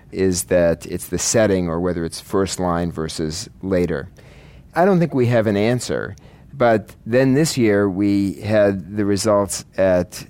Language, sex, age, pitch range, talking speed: English, male, 40-59, 90-105 Hz, 165 wpm